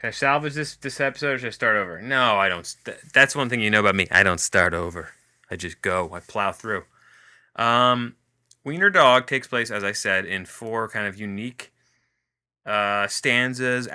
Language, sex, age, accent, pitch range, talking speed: English, male, 20-39, American, 100-120 Hz, 200 wpm